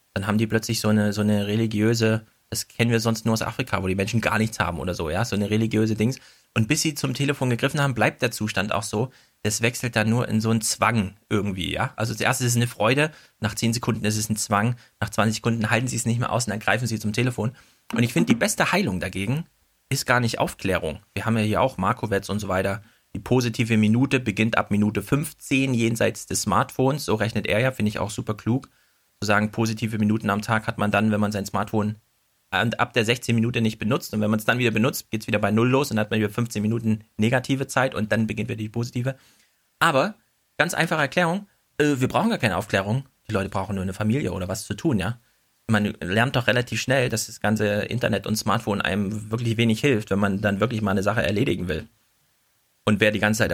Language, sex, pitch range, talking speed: German, male, 105-120 Hz, 235 wpm